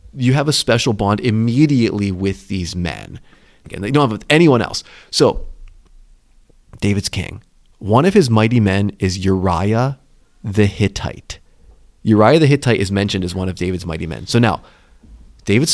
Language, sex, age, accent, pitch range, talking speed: English, male, 30-49, American, 95-135 Hz, 155 wpm